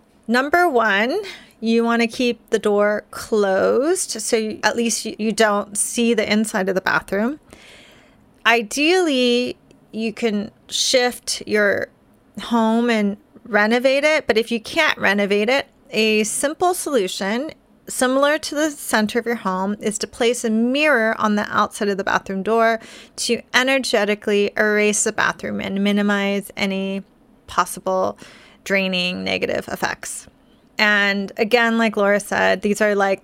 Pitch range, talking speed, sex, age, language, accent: 205-240 Hz, 140 wpm, female, 30-49, English, American